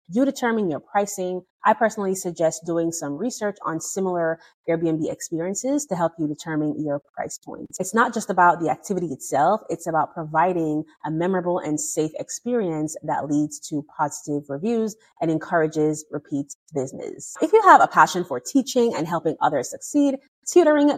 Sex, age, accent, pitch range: female, 30-49, American, 155-225 Hz